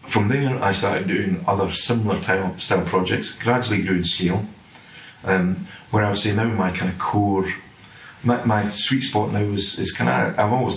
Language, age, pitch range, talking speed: English, 30-49, 85-105 Hz, 195 wpm